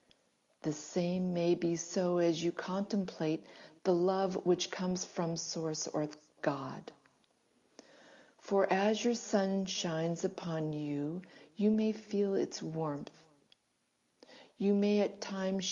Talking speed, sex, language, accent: 120 wpm, female, English, American